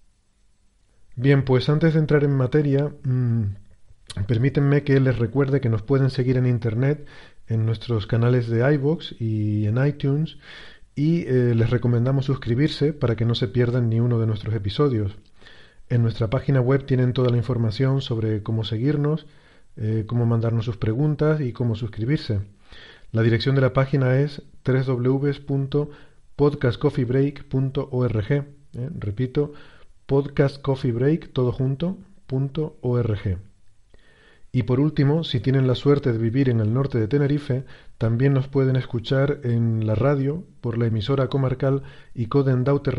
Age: 40-59